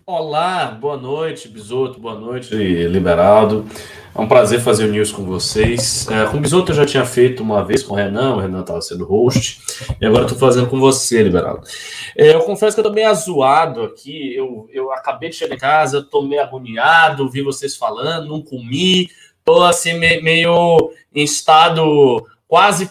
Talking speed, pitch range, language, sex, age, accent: 180 wpm, 115-165 Hz, Portuguese, male, 20-39, Brazilian